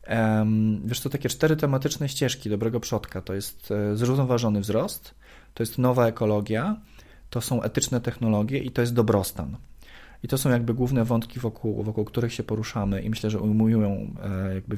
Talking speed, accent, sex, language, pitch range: 160 wpm, native, male, Polish, 105-130 Hz